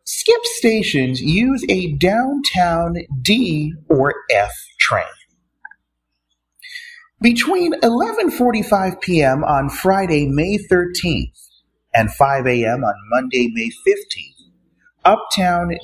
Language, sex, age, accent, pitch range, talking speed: English, male, 30-49, American, 140-230 Hz, 90 wpm